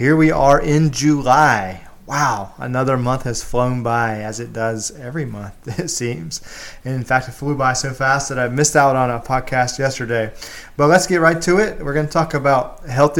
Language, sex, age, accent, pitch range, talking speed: English, male, 30-49, American, 110-135 Hz, 205 wpm